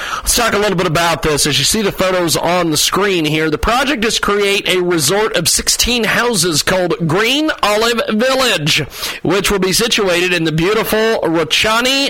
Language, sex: English, male